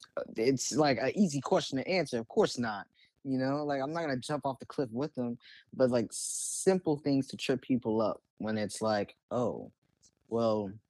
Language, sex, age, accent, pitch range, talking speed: English, male, 10-29, American, 105-130 Hz, 200 wpm